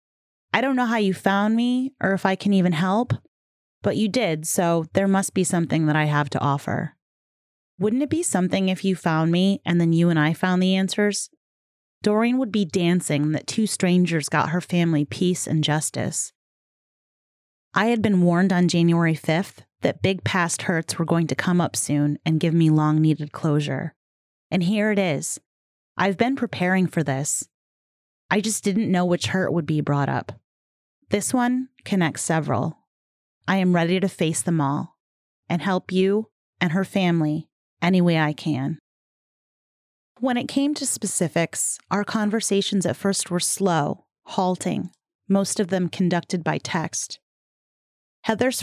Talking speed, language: 170 wpm, English